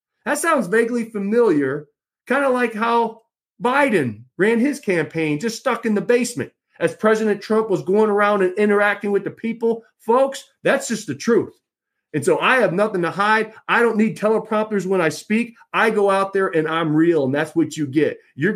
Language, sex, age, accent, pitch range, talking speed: English, male, 40-59, American, 175-225 Hz, 195 wpm